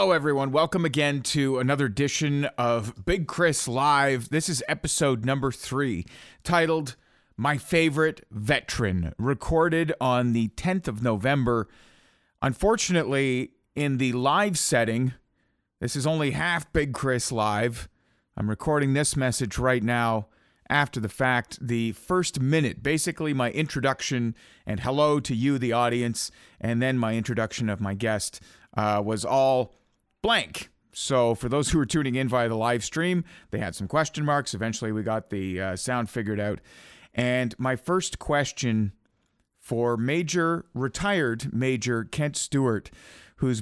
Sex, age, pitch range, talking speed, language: male, 40-59, 115-145 Hz, 145 wpm, English